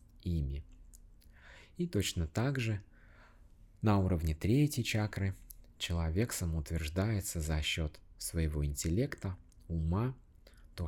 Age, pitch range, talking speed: 30-49, 80-100 Hz, 90 wpm